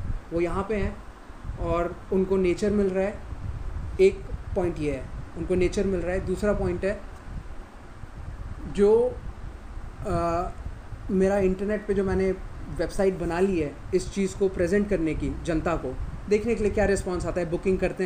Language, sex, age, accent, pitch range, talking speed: English, male, 30-49, Indian, 180-215 Hz, 165 wpm